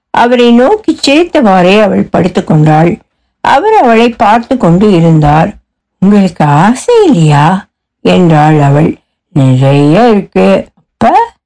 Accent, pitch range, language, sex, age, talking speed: native, 170-255 Hz, Tamil, female, 60-79, 95 wpm